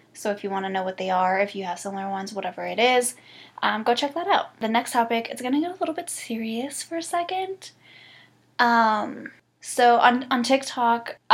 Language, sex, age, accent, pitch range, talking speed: English, female, 10-29, American, 210-245 Hz, 215 wpm